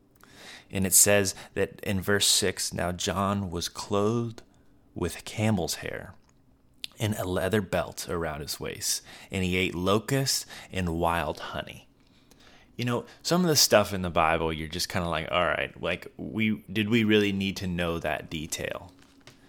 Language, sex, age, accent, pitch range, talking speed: English, male, 20-39, American, 90-110 Hz, 165 wpm